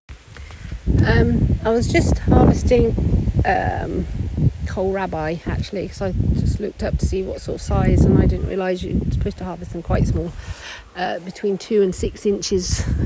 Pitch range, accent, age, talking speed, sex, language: 165-205 Hz, British, 40-59, 170 wpm, female, English